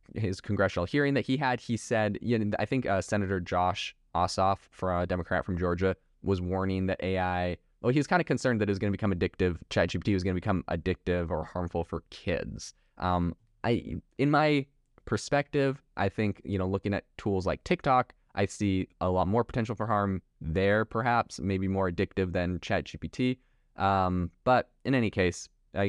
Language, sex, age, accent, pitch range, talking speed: English, male, 20-39, American, 90-110 Hz, 190 wpm